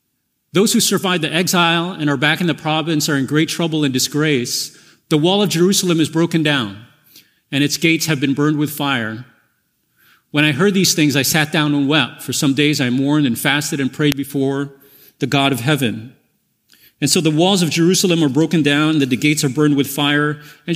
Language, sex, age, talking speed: English, male, 40-59, 210 wpm